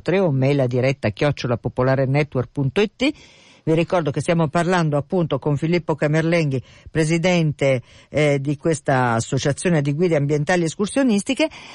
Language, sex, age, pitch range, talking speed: Italian, female, 50-69, 140-180 Hz, 115 wpm